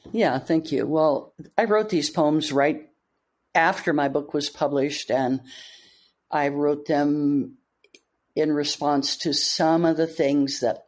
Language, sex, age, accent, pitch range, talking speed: English, female, 60-79, American, 135-160 Hz, 145 wpm